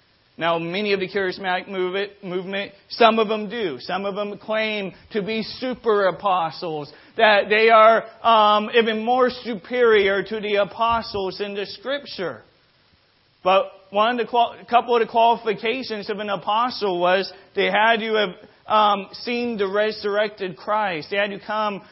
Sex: male